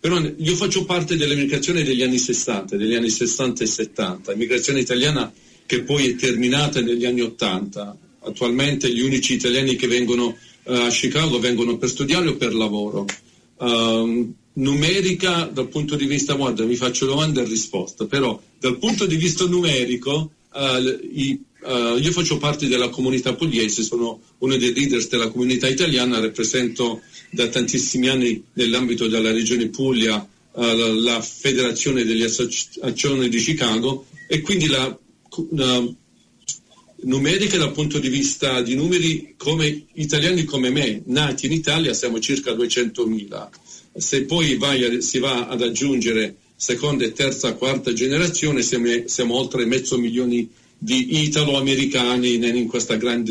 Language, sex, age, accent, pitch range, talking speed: Italian, male, 40-59, native, 120-145 Hz, 145 wpm